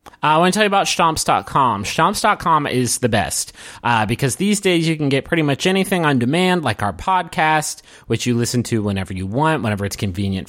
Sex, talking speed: male, 210 wpm